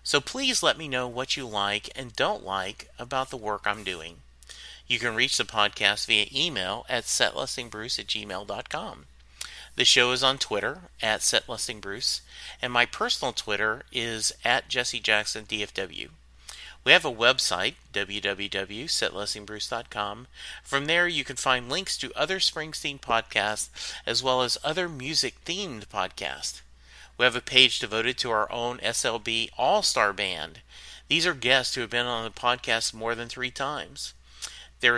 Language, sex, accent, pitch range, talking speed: English, male, American, 105-135 Hz, 150 wpm